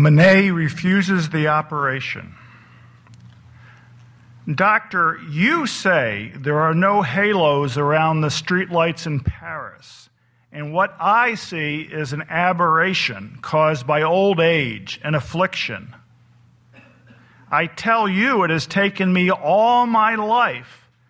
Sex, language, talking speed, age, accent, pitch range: male, English, 110 wpm, 50-69, American, 140-215 Hz